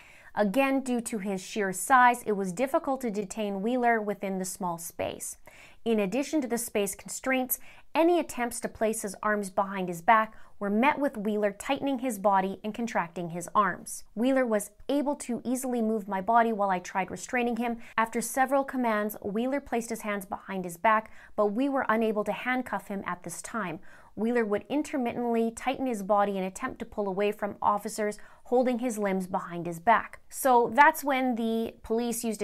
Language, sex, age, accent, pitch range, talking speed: English, female, 30-49, American, 205-255 Hz, 185 wpm